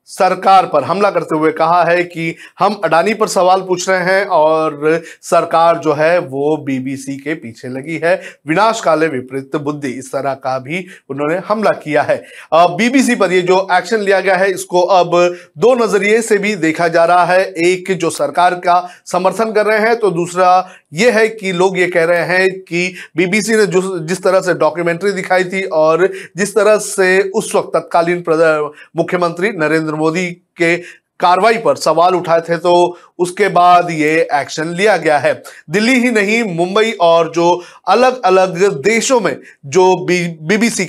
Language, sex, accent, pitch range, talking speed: Hindi, male, native, 165-195 Hz, 175 wpm